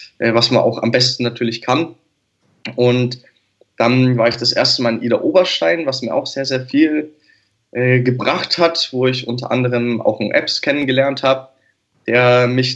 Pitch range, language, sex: 120-135 Hz, German, male